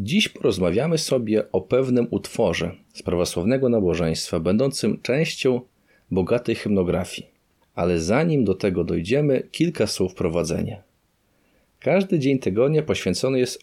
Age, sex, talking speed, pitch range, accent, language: 40-59, male, 115 wpm, 90-125 Hz, native, Polish